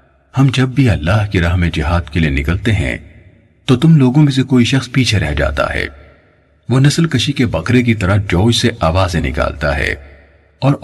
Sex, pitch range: male, 85-125 Hz